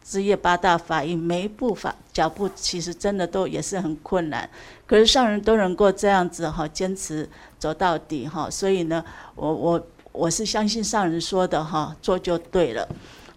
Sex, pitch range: female, 165-200 Hz